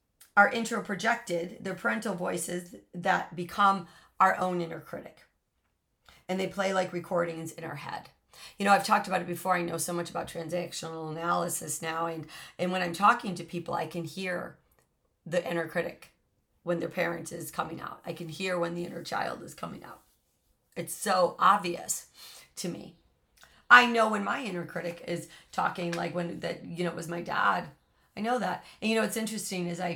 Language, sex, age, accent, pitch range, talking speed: English, female, 40-59, American, 170-200 Hz, 190 wpm